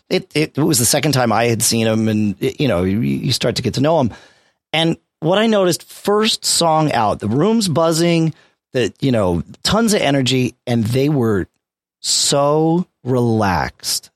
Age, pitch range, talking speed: 40-59, 100-155 Hz, 185 wpm